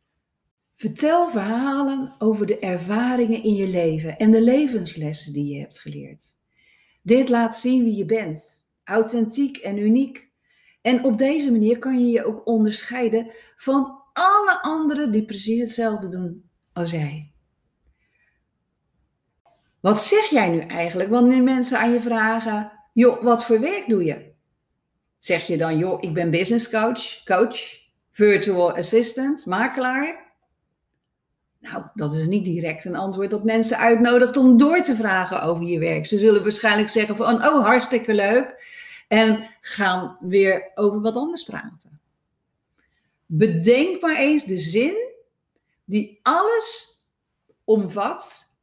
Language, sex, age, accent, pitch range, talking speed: Dutch, female, 40-59, Dutch, 185-250 Hz, 135 wpm